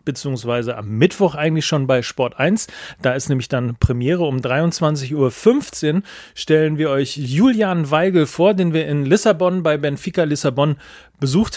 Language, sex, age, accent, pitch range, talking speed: German, male, 40-59, German, 130-165 Hz, 155 wpm